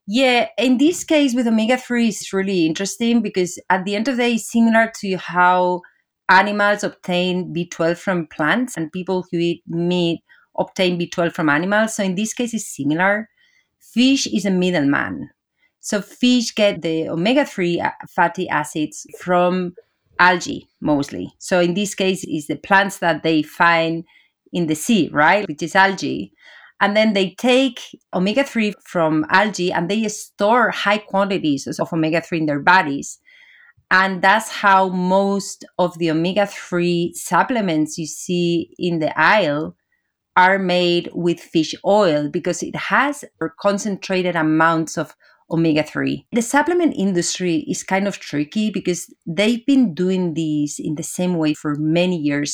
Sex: female